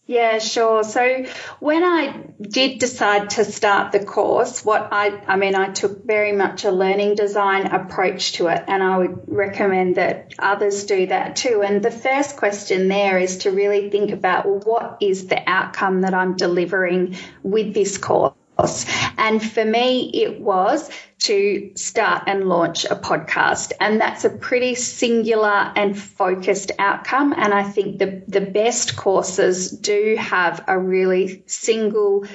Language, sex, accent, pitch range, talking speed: English, female, Australian, 195-230 Hz, 160 wpm